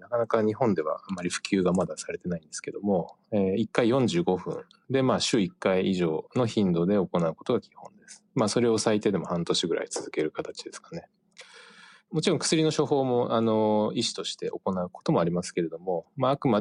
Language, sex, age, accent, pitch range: Japanese, male, 20-39, native, 90-145 Hz